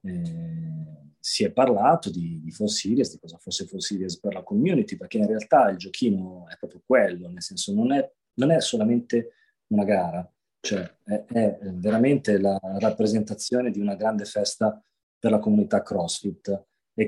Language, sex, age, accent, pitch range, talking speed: Italian, male, 30-49, native, 100-145 Hz, 160 wpm